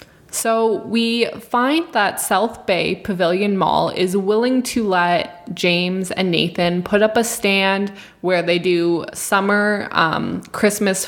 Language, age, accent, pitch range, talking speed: English, 20-39, American, 175-205 Hz, 135 wpm